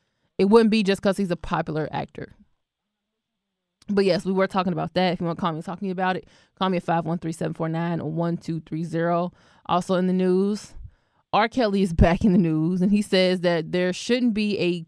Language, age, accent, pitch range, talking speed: English, 20-39, American, 175-205 Hz, 205 wpm